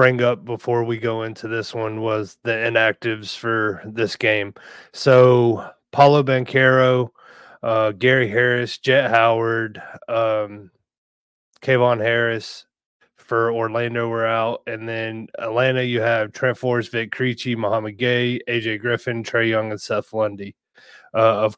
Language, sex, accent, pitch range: English, male, American, 110-130 Hz